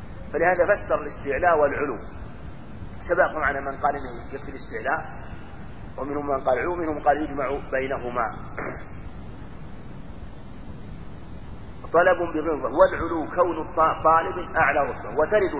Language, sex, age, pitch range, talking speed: Arabic, male, 40-59, 130-150 Hz, 105 wpm